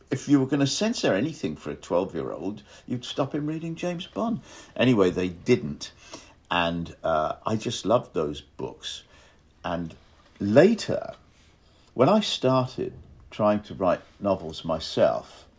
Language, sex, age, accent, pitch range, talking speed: English, male, 50-69, British, 85-135 Hz, 140 wpm